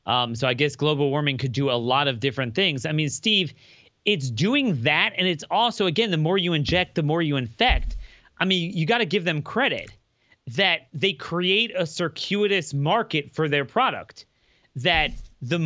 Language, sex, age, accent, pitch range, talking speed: English, male, 30-49, American, 130-175 Hz, 190 wpm